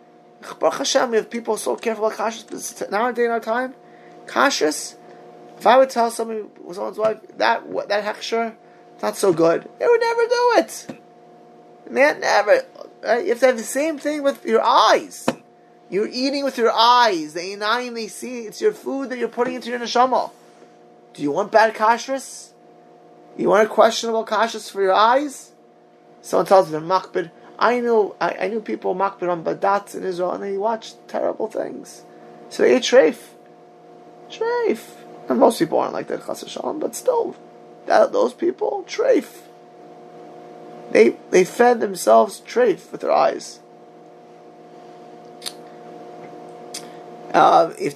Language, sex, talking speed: English, male, 155 wpm